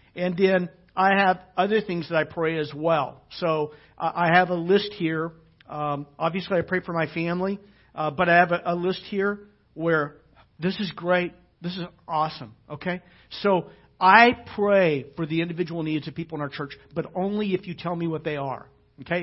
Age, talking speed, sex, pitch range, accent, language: 50-69, 195 wpm, male, 150-195 Hz, American, English